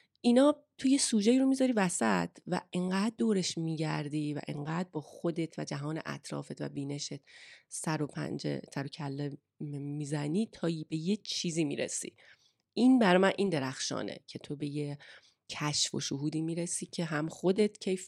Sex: female